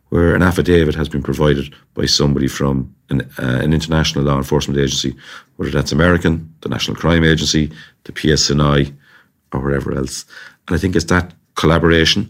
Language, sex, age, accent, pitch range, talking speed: English, male, 40-59, Irish, 70-80 Hz, 165 wpm